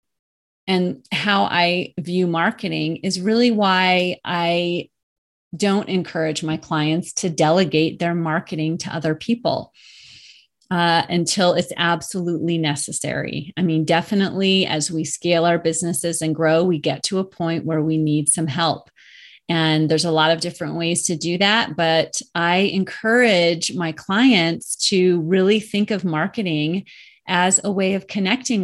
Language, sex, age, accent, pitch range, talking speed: English, female, 30-49, American, 165-200 Hz, 145 wpm